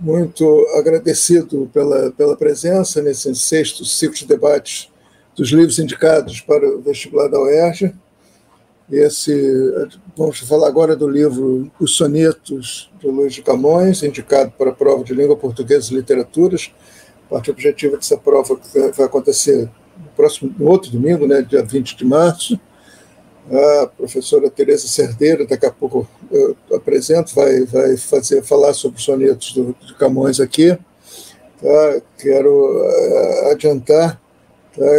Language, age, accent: Portuguese, 60-79, Brazilian